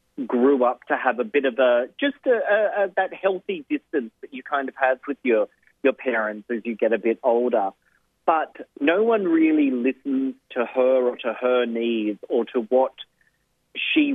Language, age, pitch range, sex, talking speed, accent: English, 30-49, 120-165 Hz, male, 185 wpm, Australian